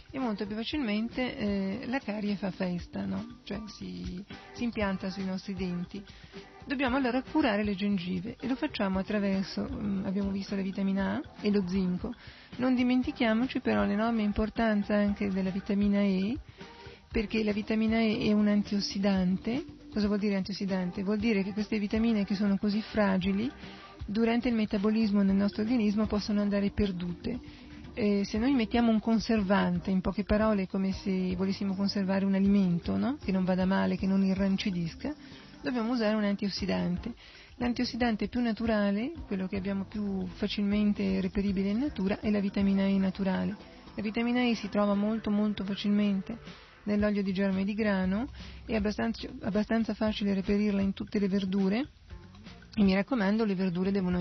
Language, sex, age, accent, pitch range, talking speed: Italian, female, 40-59, native, 195-225 Hz, 160 wpm